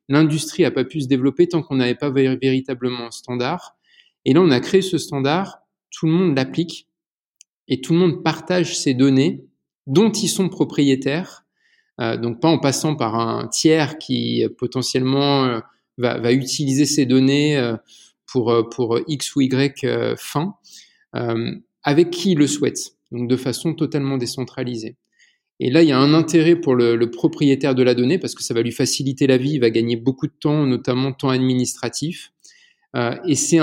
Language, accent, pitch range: French, French, 125-160 Hz